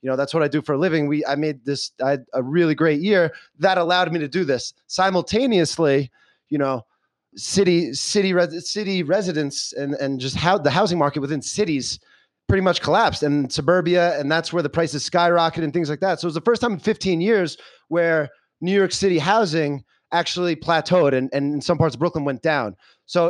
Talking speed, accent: 215 wpm, American